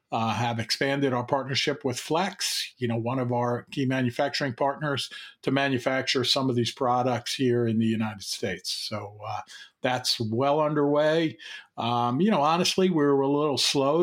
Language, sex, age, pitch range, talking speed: English, male, 50-69, 120-145 Hz, 170 wpm